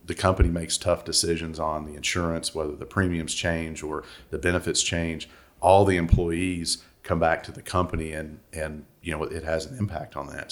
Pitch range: 75-85 Hz